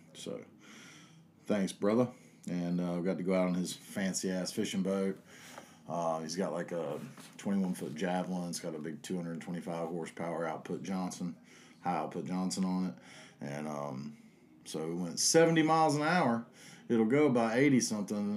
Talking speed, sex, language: 170 wpm, male, English